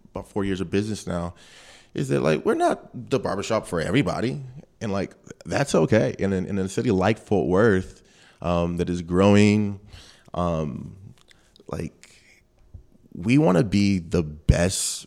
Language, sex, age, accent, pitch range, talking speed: English, male, 20-39, American, 90-115 Hz, 155 wpm